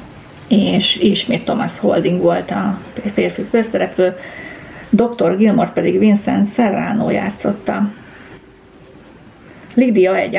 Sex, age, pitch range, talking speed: female, 30-49, 185-225 Hz, 90 wpm